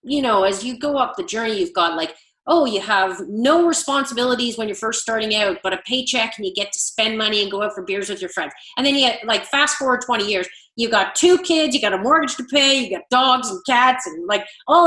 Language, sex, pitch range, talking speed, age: English, female, 190-270 Hz, 260 wpm, 30-49